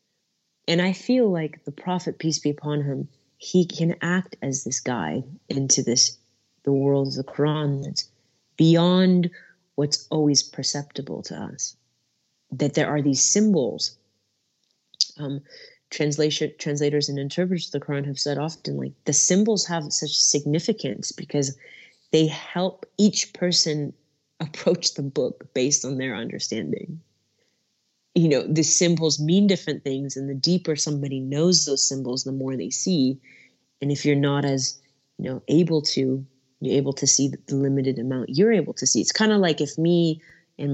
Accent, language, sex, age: American, English, female, 30-49